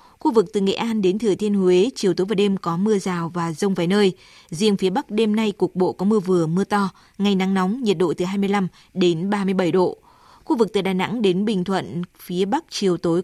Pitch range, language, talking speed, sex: 180-210 Hz, Vietnamese, 245 wpm, female